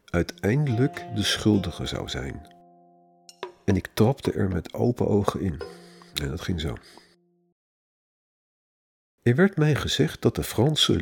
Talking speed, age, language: 130 wpm, 50-69, Dutch